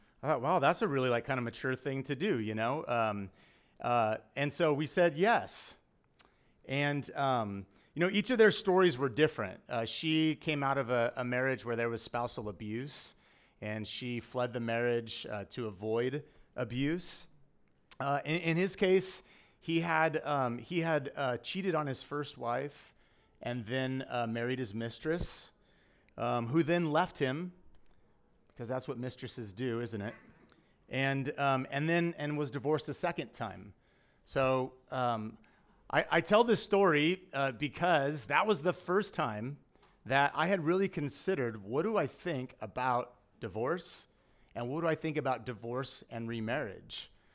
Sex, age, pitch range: male, 30-49, 120-160 Hz